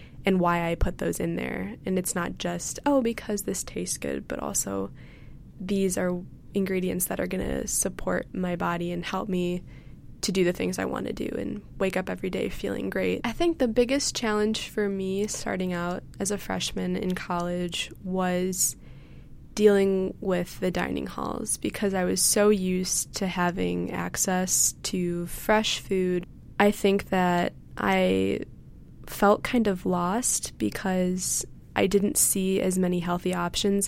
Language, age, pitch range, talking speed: English, 20-39, 175-200 Hz, 165 wpm